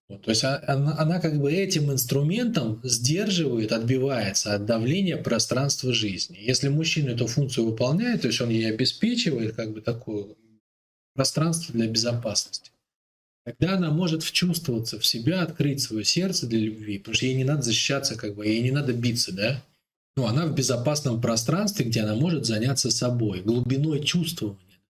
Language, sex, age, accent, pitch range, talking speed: Russian, male, 20-39, native, 110-145 Hz, 165 wpm